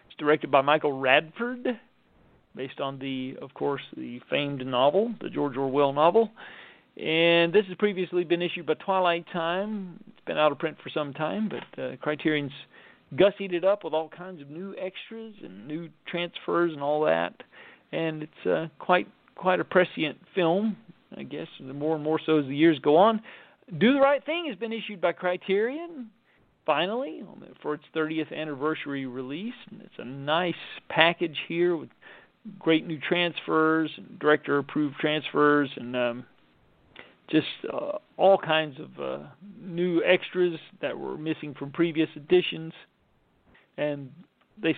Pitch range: 150-190 Hz